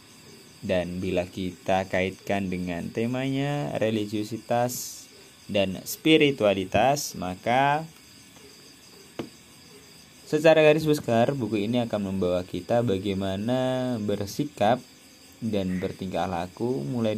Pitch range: 95-120 Hz